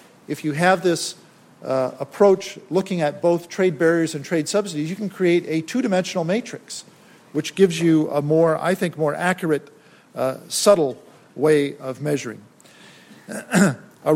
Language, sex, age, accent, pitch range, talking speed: English, male, 50-69, American, 145-180 Hz, 150 wpm